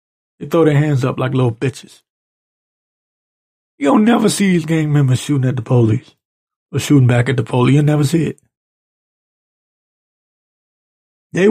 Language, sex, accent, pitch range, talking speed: English, male, American, 130-155 Hz, 155 wpm